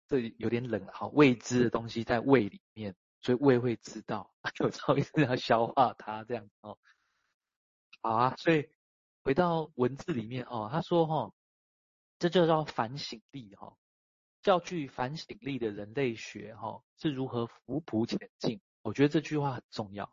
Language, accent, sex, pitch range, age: Chinese, native, male, 110-140 Hz, 20-39